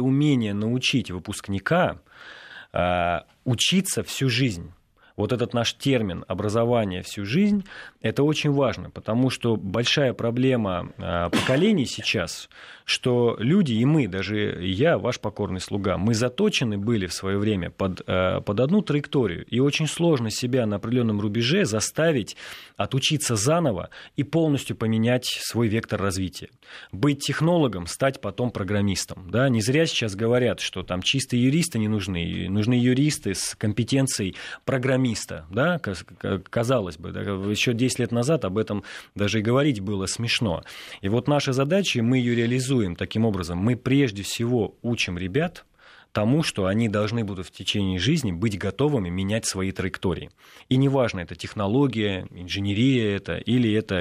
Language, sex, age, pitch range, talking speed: Russian, male, 30-49, 100-130 Hz, 140 wpm